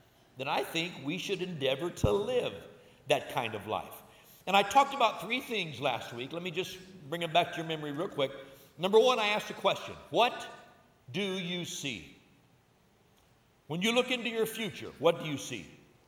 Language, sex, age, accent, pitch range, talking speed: English, male, 60-79, American, 160-215 Hz, 190 wpm